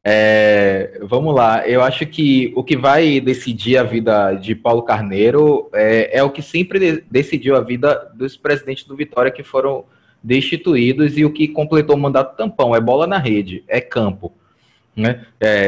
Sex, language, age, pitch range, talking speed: male, Portuguese, 20-39, 115-145 Hz, 165 wpm